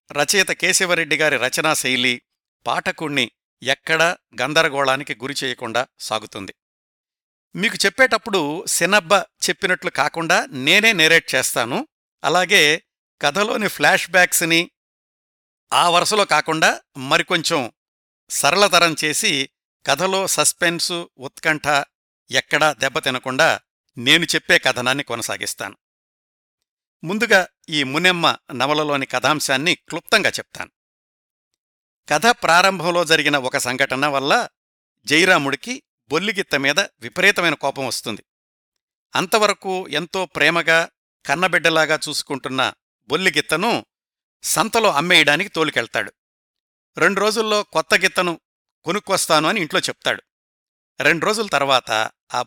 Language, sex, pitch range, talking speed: Telugu, male, 135-185 Hz, 85 wpm